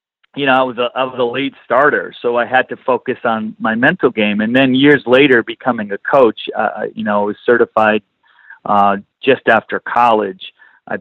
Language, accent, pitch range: English, American, 110-125 Hz